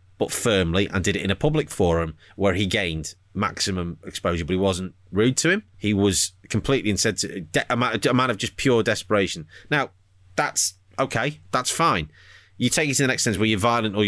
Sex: male